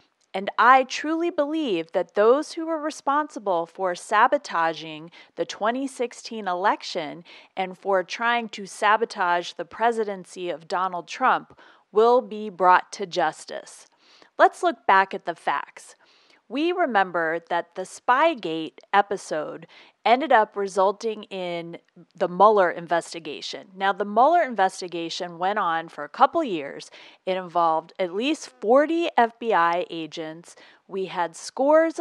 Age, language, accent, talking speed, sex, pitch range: 30-49, English, American, 130 wpm, female, 175-245 Hz